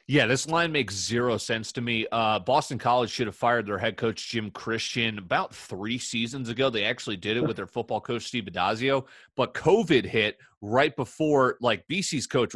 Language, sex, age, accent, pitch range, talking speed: English, male, 30-49, American, 95-120 Hz, 195 wpm